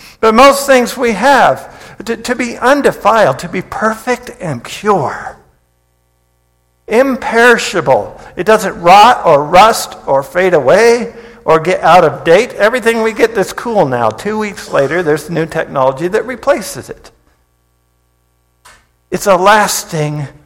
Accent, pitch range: American, 155-235 Hz